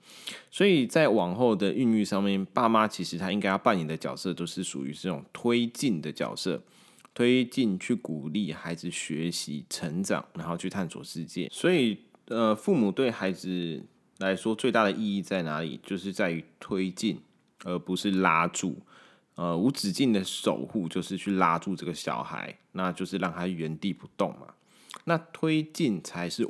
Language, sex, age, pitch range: Chinese, male, 20-39, 85-105 Hz